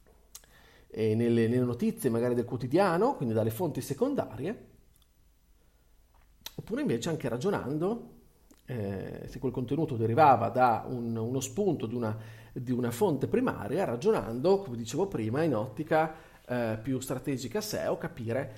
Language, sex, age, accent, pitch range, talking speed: Italian, male, 40-59, native, 115-175 Hz, 130 wpm